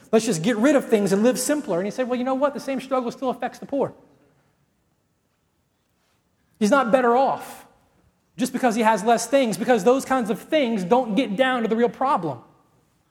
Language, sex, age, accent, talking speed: English, male, 30-49, American, 205 wpm